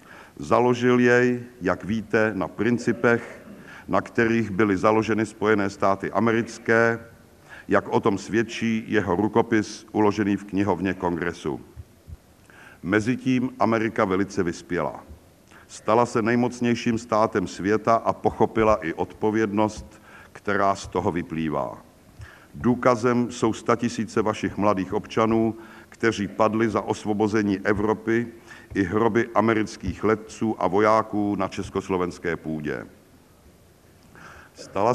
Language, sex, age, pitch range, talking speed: Czech, male, 50-69, 100-115 Hz, 105 wpm